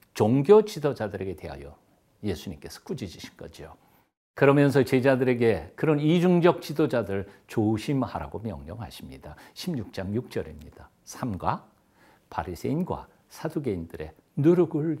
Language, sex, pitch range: Korean, male, 100-165 Hz